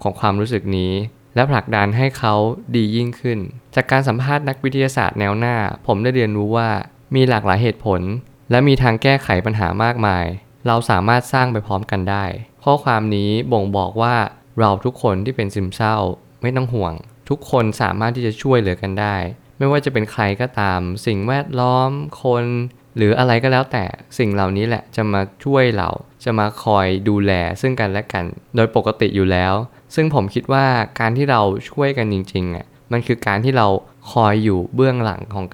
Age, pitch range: 20-39, 100-125 Hz